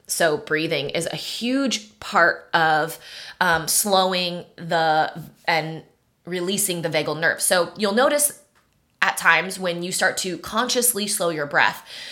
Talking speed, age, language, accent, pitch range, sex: 140 wpm, 20-39, English, American, 175-220 Hz, female